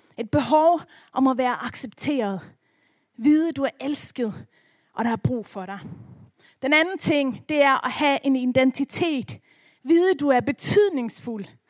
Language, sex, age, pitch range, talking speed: Danish, female, 30-49, 230-285 Hz, 160 wpm